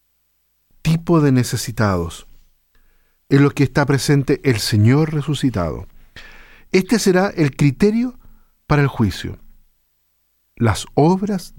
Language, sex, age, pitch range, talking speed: Spanish, male, 50-69, 115-160 Hz, 105 wpm